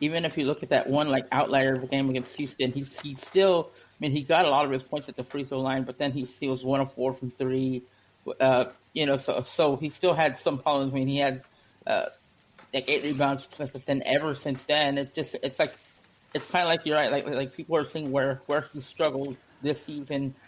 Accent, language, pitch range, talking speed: American, English, 130-145 Hz, 255 wpm